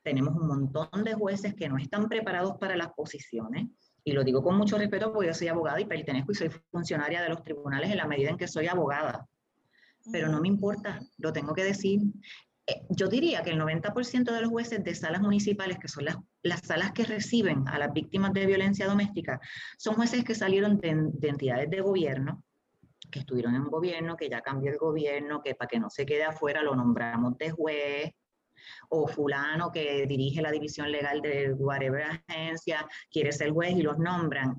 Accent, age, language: American, 30-49, English